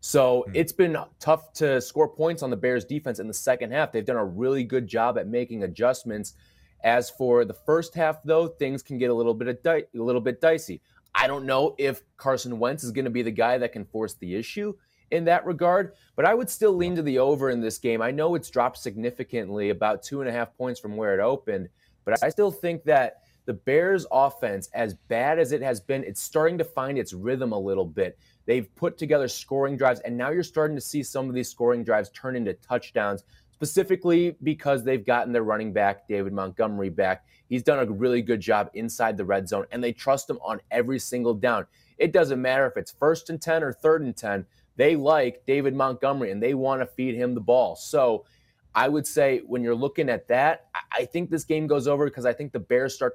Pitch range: 120-150 Hz